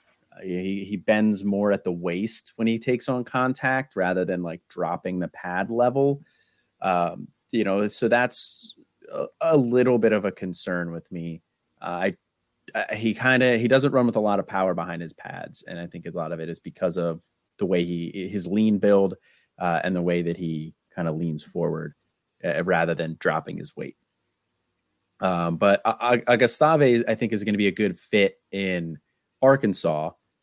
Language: English